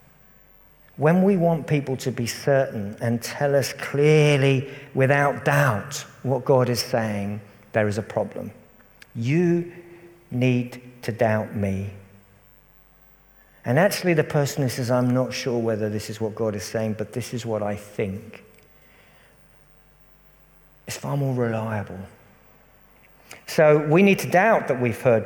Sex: male